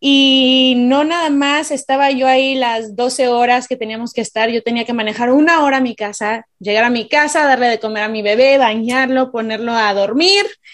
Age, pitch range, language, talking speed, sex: 20-39, 230-270 Hz, Spanish, 205 wpm, female